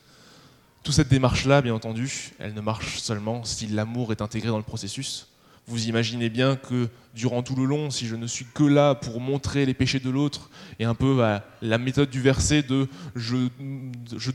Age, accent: 20-39, French